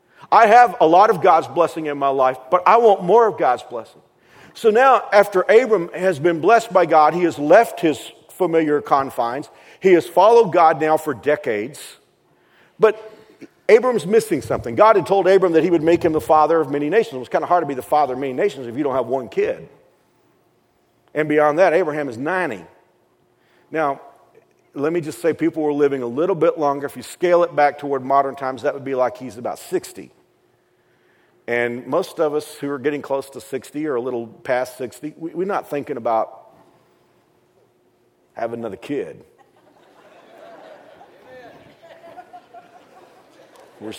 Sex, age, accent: male, 40-59, American